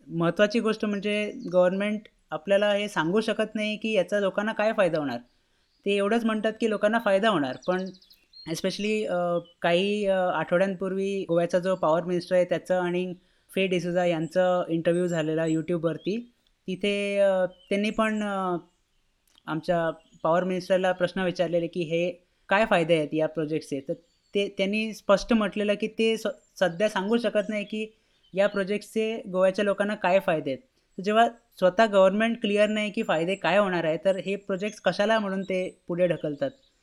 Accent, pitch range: native, 175-205 Hz